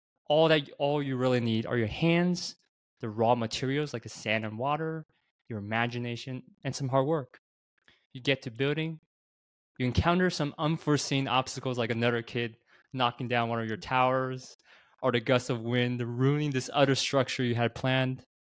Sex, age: male, 20-39